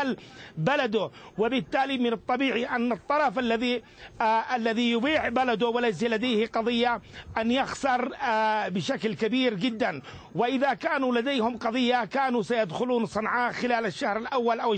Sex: male